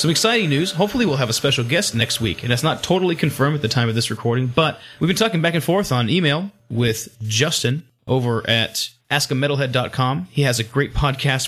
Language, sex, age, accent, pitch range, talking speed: English, male, 30-49, American, 115-155 Hz, 215 wpm